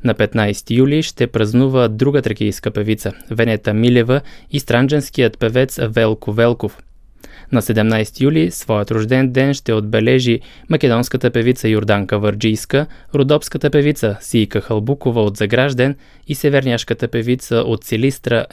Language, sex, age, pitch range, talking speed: Bulgarian, male, 20-39, 110-135 Hz, 125 wpm